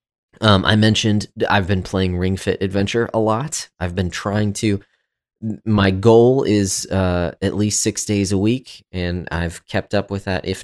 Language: English